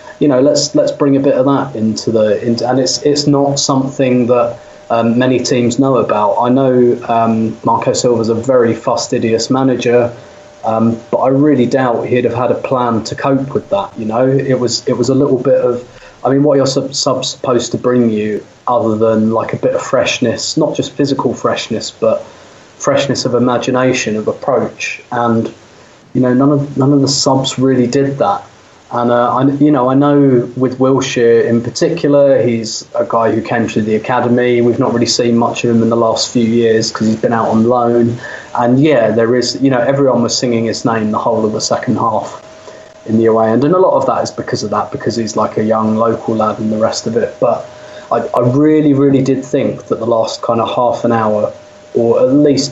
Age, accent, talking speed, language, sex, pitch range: 20-39, British, 215 wpm, English, male, 115-135 Hz